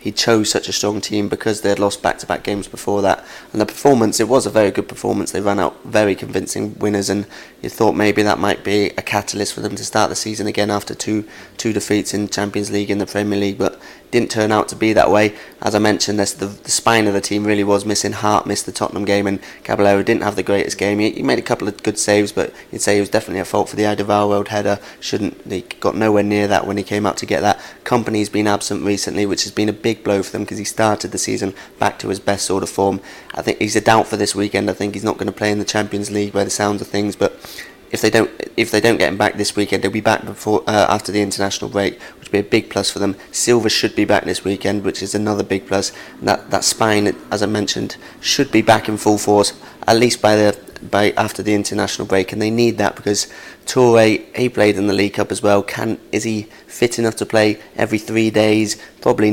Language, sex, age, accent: English, male, 20-39, British